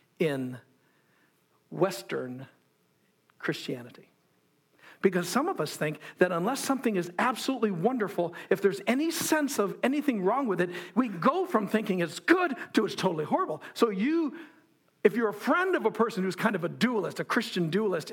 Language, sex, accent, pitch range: English, male, American, 185-275 Hz